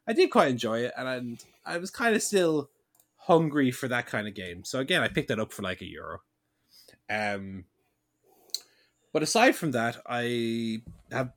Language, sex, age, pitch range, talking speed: English, male, 20-39, 110-165 Hz, 180 wpm